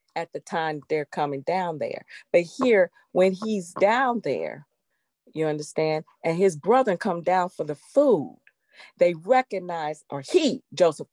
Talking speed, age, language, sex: 150 wpm, 40-59, English, female